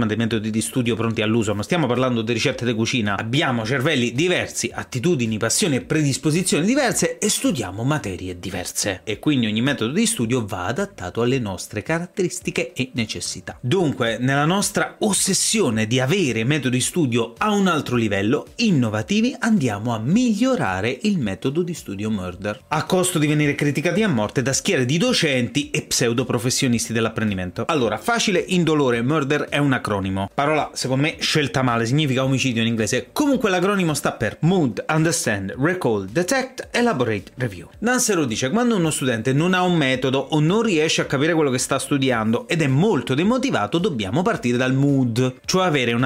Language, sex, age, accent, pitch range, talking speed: Italian, male, 30-49, native, 115-170 Hz, 170 wpm